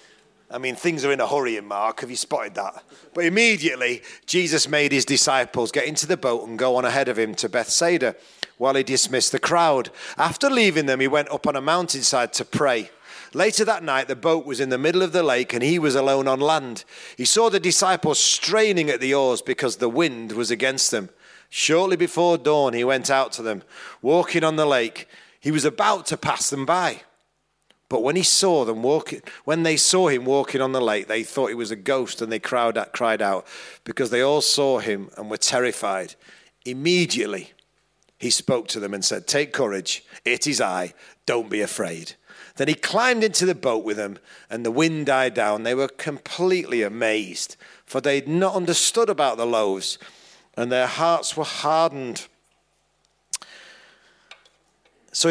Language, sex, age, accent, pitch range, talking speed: English, male, 40-59, British, 125-170 Hz, 190 wpm